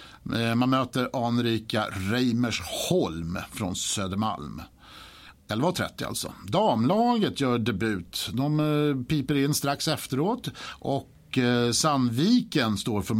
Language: Swedish